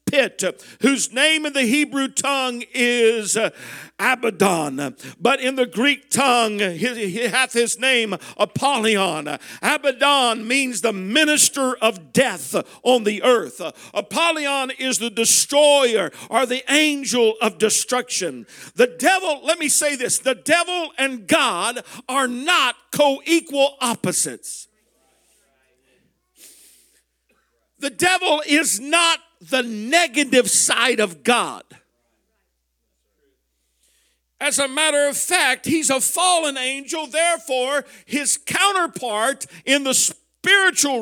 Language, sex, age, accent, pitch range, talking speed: English, male, 50-69, American, 230-300 Hz, 110 wpm